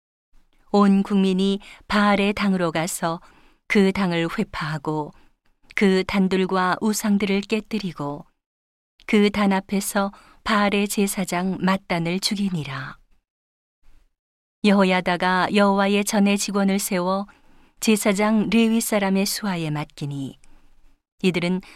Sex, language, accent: female, Korean, native